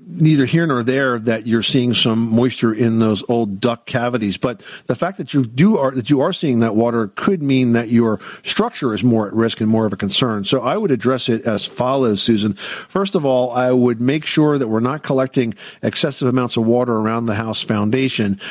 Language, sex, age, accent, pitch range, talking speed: English, male, 50-69, American, 110-135 Hz, 220 wpm